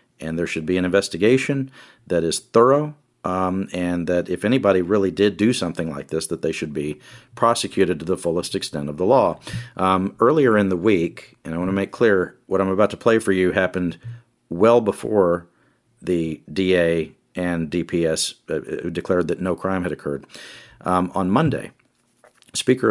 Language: English